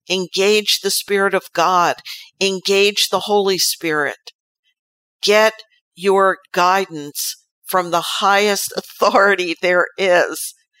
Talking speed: 100 wpm